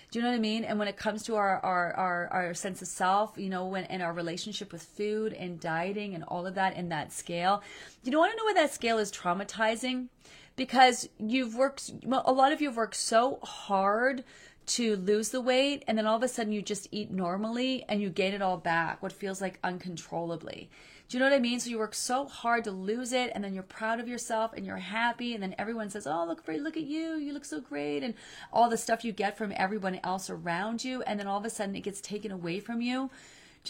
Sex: female